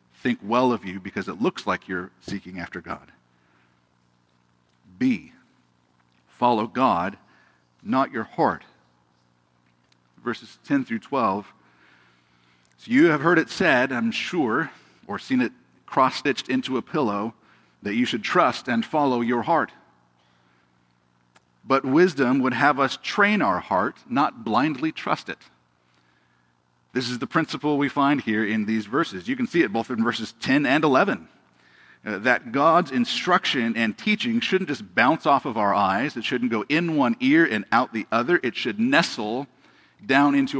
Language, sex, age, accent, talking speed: English, male, 50-69, American, 155 wpm